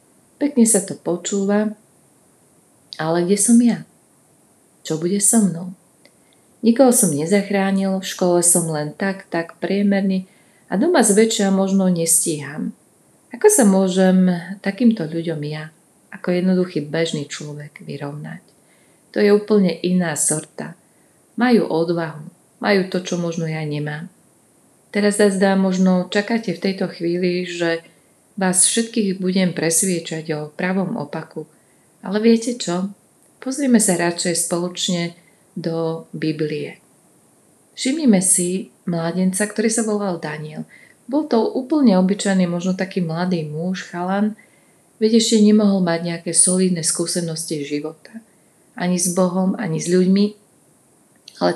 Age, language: 30-49, Slovak